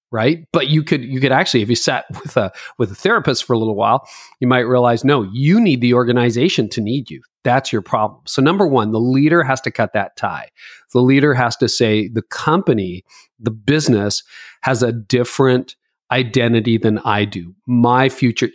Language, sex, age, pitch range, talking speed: English, male, 40-59, 115-135 Hz, 195 wpm